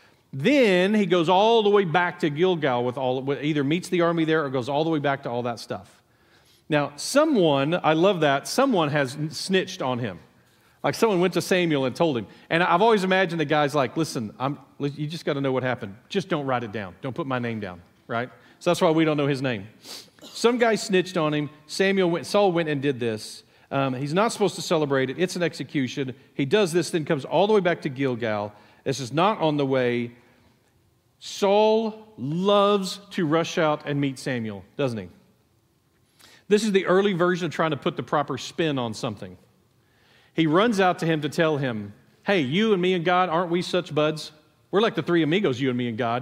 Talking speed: 220 wpm